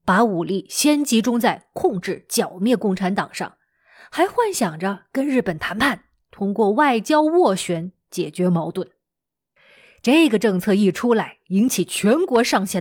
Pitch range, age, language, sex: 195-265 Hz, 20-39, Chinese, female